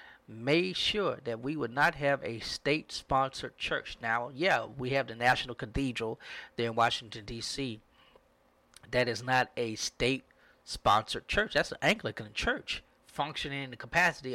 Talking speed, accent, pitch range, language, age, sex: 145 wpm, American, 120-140 Hz, English, 40-59, male